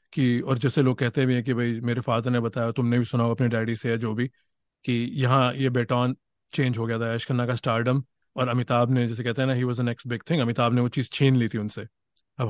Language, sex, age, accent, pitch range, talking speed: Hindi, male, 30-49, native, 120-145 Hz, 270 wpm